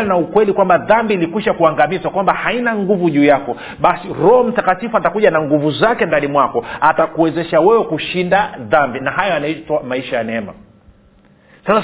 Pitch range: 155-205 Hz